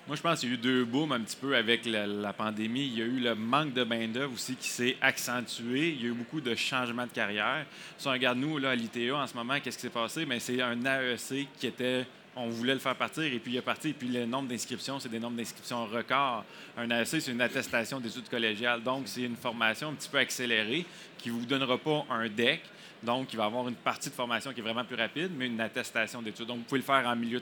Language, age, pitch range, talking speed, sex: French, 30-49, 120-135 Hz, 270 wpm, male